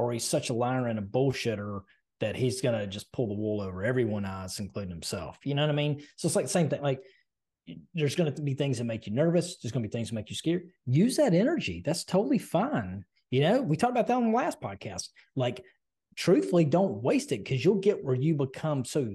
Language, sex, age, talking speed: English, male, 30-49, 250 wpm